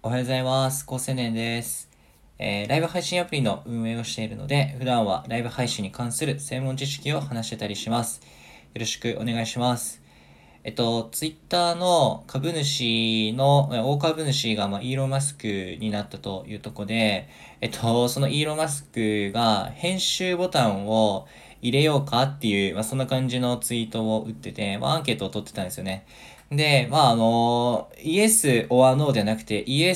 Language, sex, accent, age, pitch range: Japanese, male, native, 20-39, 110-145 Hz